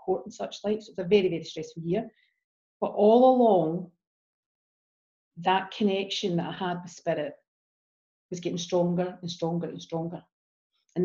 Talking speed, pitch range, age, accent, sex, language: 160 wpm, 175-215 Hz, 40-59, British, female, English